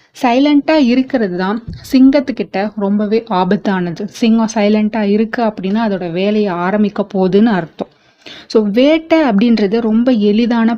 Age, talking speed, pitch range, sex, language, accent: 30-49, 110 wpm, 200-250 Hz, female, Tamil, native